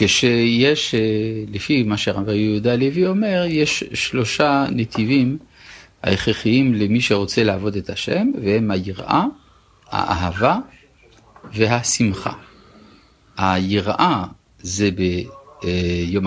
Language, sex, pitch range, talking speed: Hebrew, male, 95-130 Hz, 85 wpm